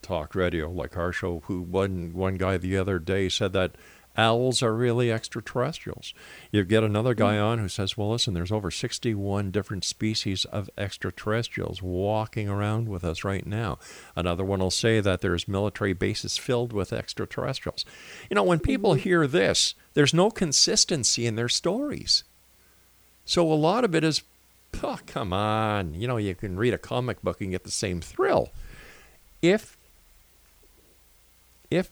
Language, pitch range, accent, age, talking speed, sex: English, 90-125 Hz, American, 50-69, 165 wpm, male